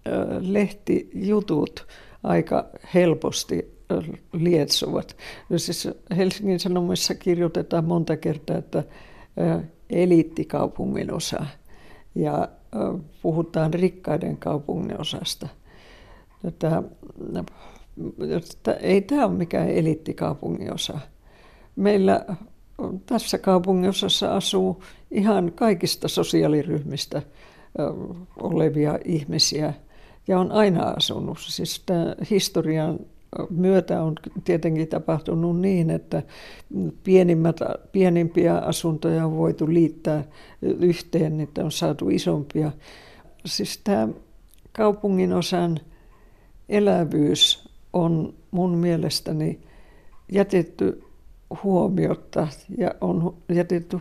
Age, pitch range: 60-79, 160-185 Hz